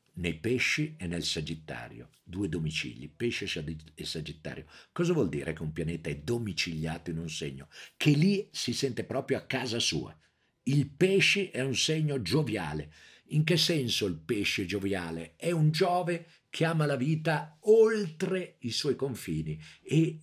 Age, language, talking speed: 50-69, Italian, 155 wpm